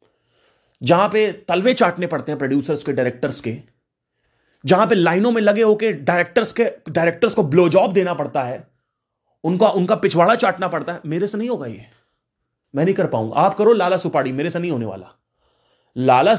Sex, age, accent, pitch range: male, 30-49, native, 135-215 Hz